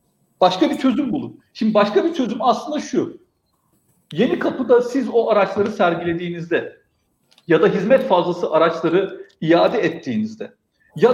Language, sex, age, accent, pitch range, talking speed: Turkish, male, 50-69, native, 180-260 Hz, 130 wpm